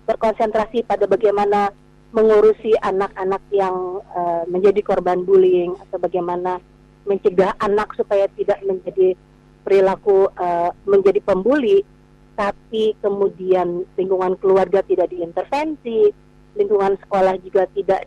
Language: Indonesian